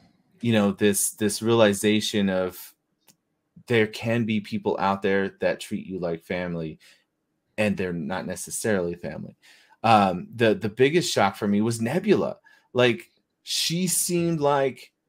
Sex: male